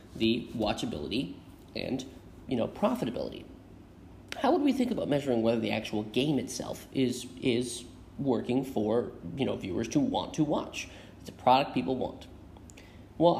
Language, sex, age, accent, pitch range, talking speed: English, male, 30-49, American, 105-165 Hz, 150 wpm